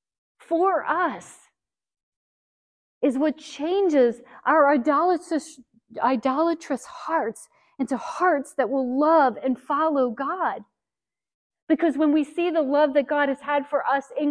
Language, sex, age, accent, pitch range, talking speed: English, female, 40-59, American, 230-300 Hz, 125 wpm